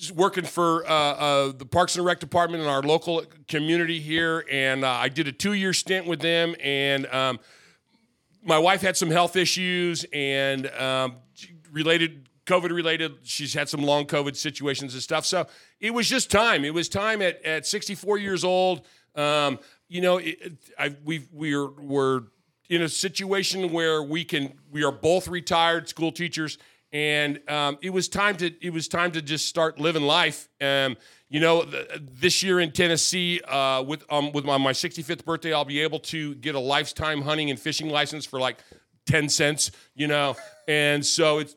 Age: 40-59